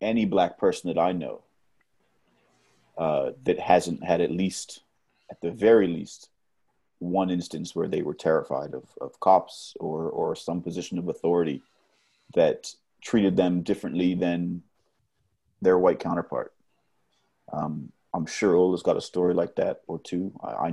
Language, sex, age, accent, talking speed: English, male, 30-49, American, 150 wpm